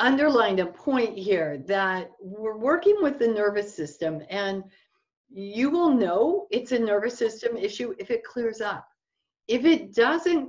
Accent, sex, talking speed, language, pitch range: American, female, 155 wpm, English, 165-230 Hz